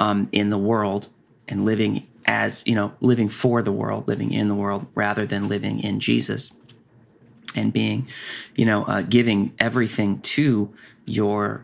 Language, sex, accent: English, male, American